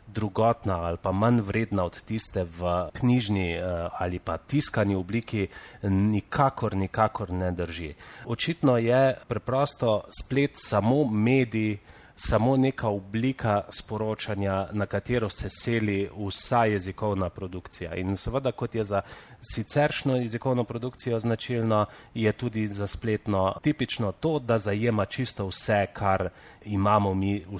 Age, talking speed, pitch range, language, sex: 30-49, 125 wpm, 95-120 Hz, Italian, male